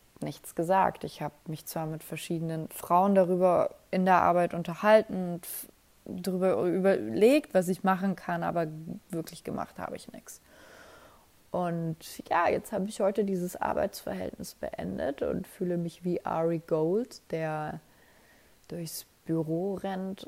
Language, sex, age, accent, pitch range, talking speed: German, female, 20-39, German, 160-190 Hz, 140 wpm